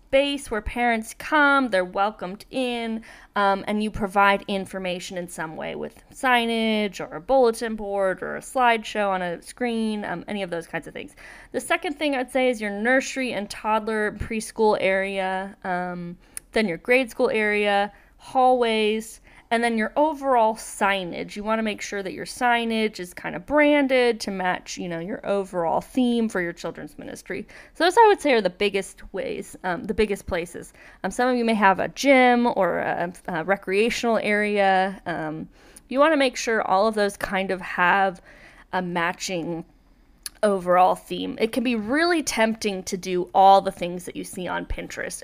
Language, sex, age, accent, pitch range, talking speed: English, female, 20-39, American, 190-240 Hz, 185 wpm